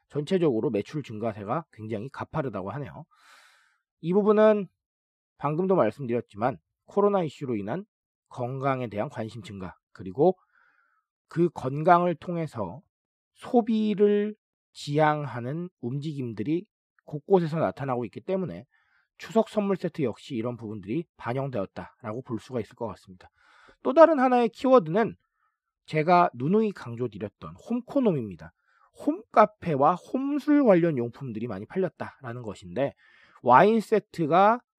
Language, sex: Korean, male